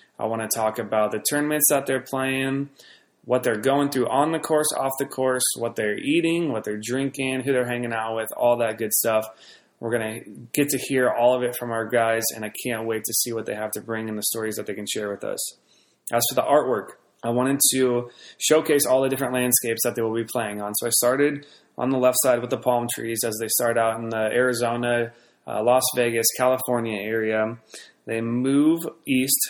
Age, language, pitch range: 20-39, English, 110-125 Hz